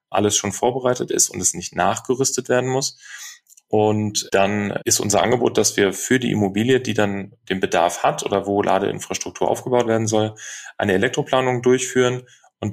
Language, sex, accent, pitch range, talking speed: German, male, German, 105-120 Hz, 165 wpm